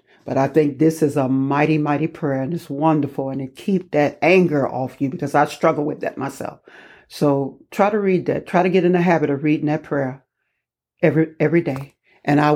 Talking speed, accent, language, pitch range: 215 wpm, American, English, 140-165 Hz